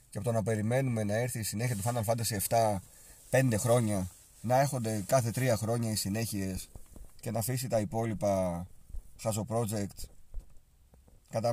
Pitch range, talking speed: 95-135 Hz, 150 wpm